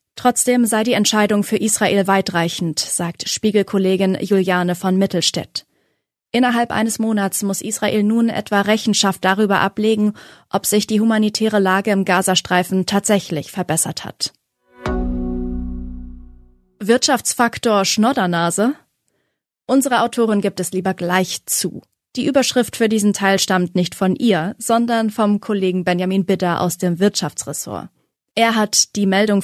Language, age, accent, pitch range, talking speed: German, 30-49, German, 185-225 Hz, 125 wpm